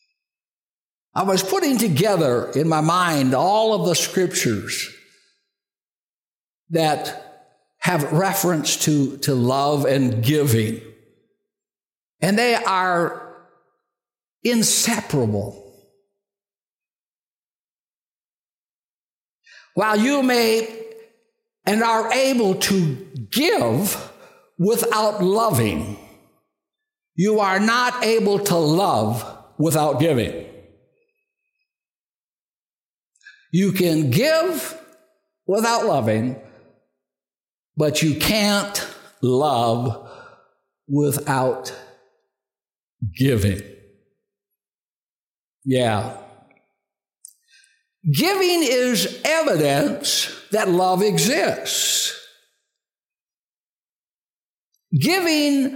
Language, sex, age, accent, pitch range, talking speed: English, male, 60-79, American, 145-240 Hz, 65 wpm